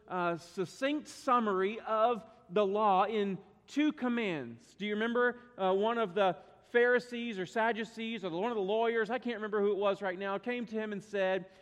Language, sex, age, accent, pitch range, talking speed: English, male, 40-59, American, 180-225 Hz, 190 wpm